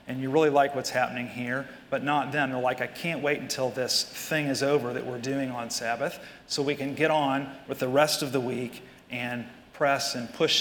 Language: English